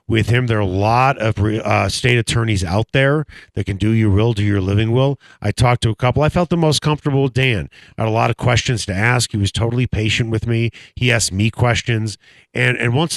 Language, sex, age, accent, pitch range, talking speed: English, male, 40-59, American, 95-125 Hz, 245 wpm